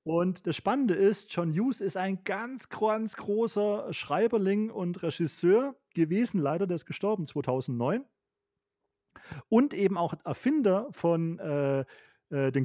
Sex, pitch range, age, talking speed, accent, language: male, 170-225 Hz, 30-49, 130 wpm, German, German